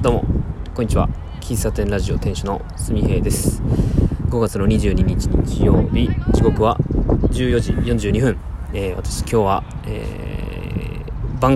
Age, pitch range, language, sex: 20-39, 90-125 Hz, Japanese, male